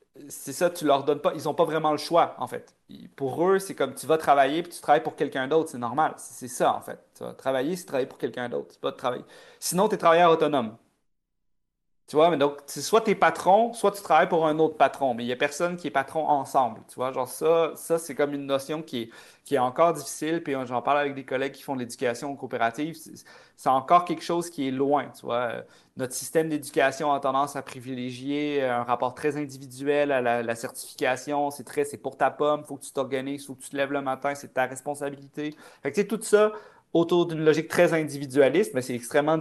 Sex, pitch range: male, 135-165 Hz